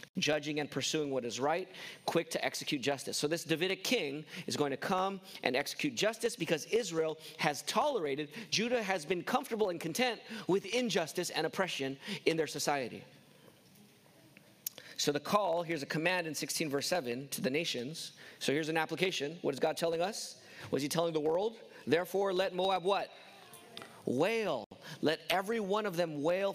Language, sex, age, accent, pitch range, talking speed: English, male, 40-59, American, 150-190 Hz, 170 wpm